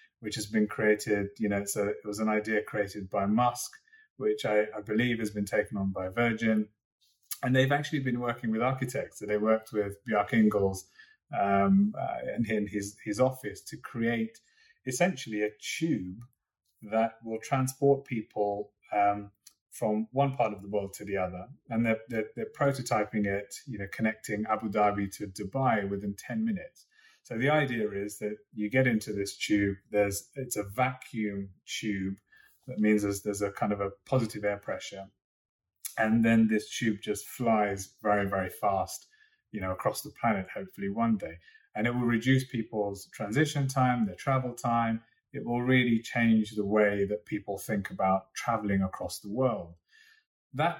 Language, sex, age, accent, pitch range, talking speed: English, male, 30-49, British, 105-125 Hz, 175 wpm